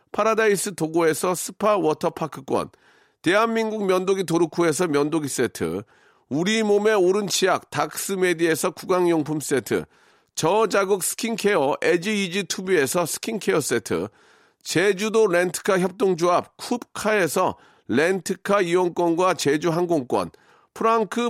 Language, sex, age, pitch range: Korean, male, 40-59, 170-220 Hz